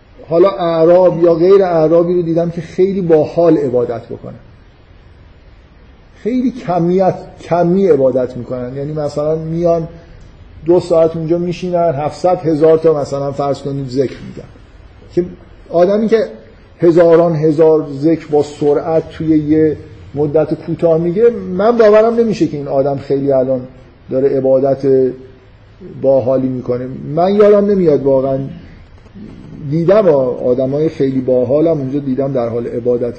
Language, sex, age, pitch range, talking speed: Persian, male, 50-69, 130-180 Hz, 130 wpm